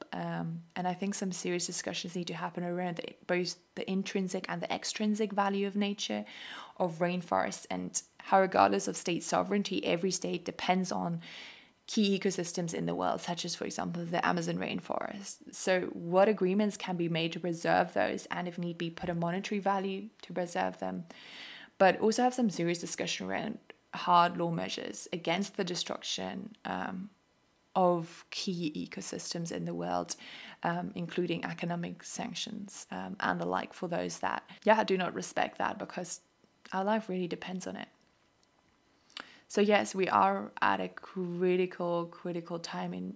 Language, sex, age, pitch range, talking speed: English, female, 20-39, 170-195 Hz, 165 wpm